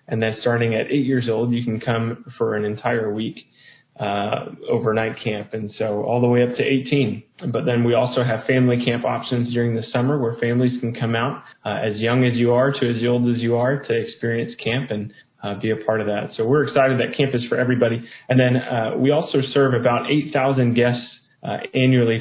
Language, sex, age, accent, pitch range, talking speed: English, male, 20-39, American, 115-125 Hz, 220 wpm